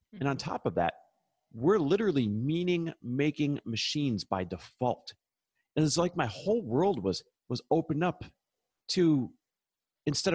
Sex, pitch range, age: male, 105-150 Hz, 40-59